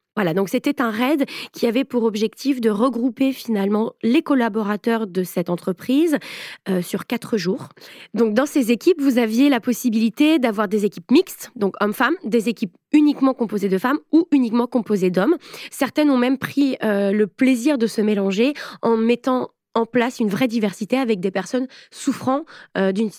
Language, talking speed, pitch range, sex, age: French, 175 wpm, 205-260 Hz, female, 20-39